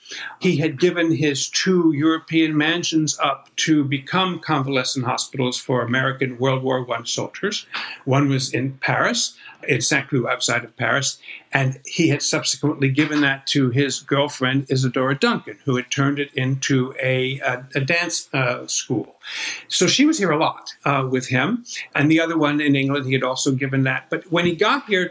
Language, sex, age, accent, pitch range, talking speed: English, male, 60-79, American, 135-165 Hz, 180 wpm